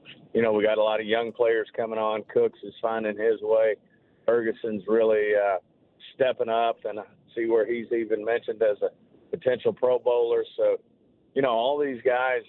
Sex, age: male, 50-69